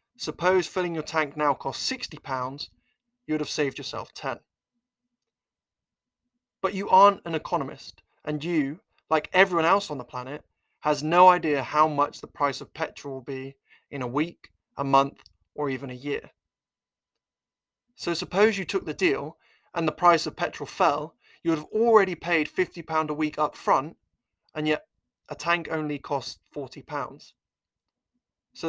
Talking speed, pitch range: 160 wpm, 140-175 Hz